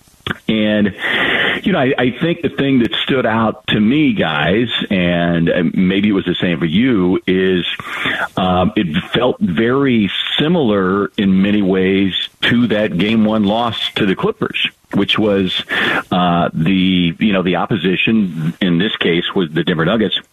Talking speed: 160 wpm